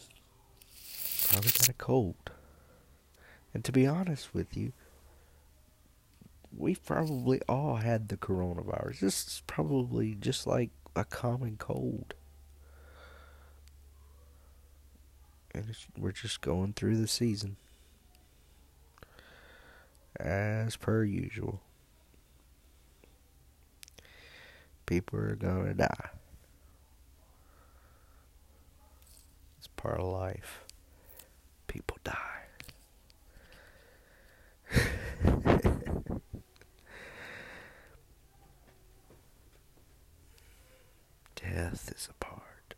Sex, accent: male, American